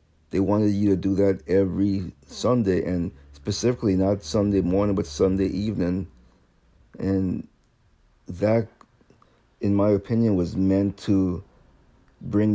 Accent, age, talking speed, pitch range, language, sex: American, 50-69, 120 wpm, 90-100 Hz, English, male